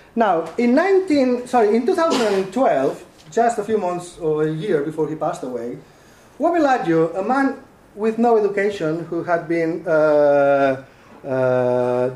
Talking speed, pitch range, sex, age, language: 140 wpm, 140-185 Hz, male, 30-49, English